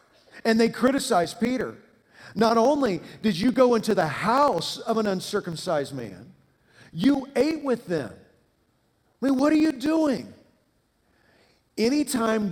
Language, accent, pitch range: English, American, 165-225 Hz